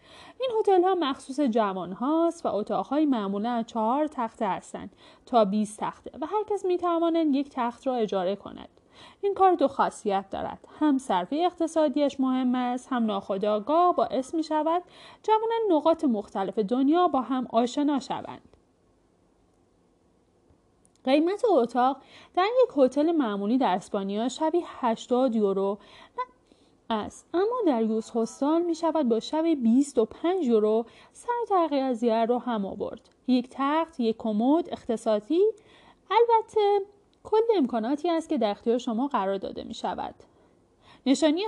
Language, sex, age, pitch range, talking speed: Persian, female, 30-49, 220-320 Hz, 135 wpm